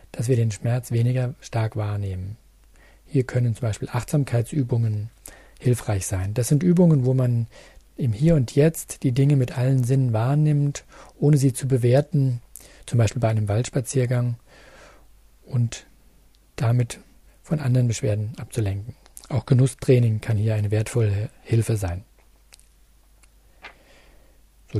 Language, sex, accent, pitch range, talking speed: German, male, German, 110-135 Hz, 130 wpm